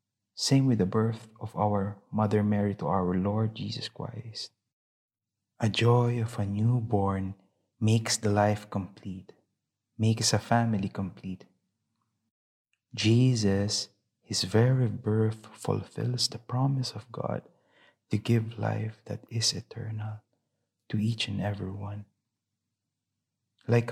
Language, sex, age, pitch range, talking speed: English, male, 20-39, 105-120 Hz, 120 wpm